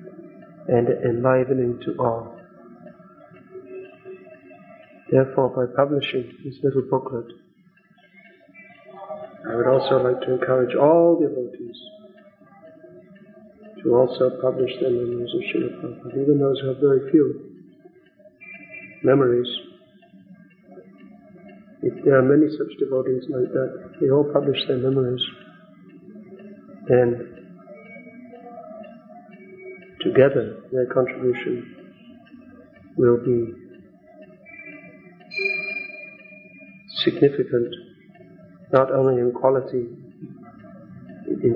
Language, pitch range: English, 125-190 Hz